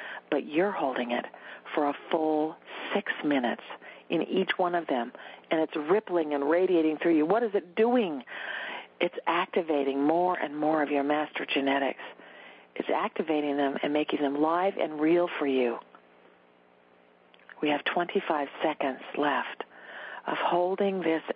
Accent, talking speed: American, 150 wpm